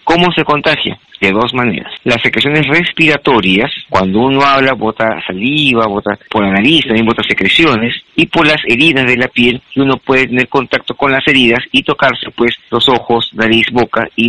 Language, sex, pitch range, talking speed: Spanish, male, 110-140 Hz, 185 wpm